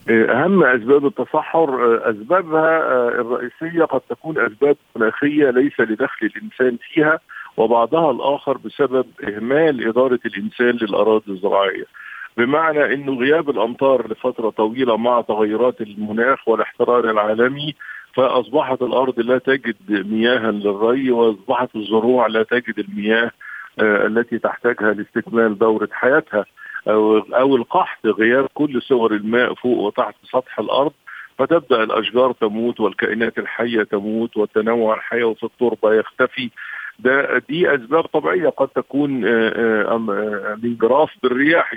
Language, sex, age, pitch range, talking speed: Arabic, male, 50-69, 110-130 Hz, 110 wpm